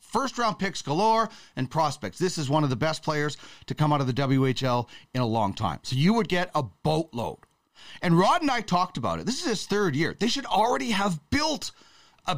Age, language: 40-59, English